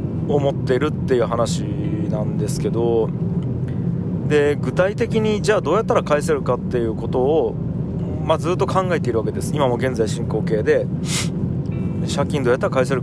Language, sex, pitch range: Japanese, male, 135-160 Hz